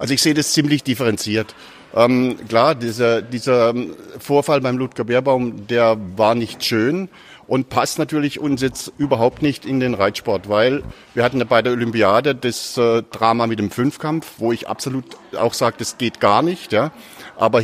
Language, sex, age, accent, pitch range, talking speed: German, male, 50-69, German, 115-150 Hz, 175 wpm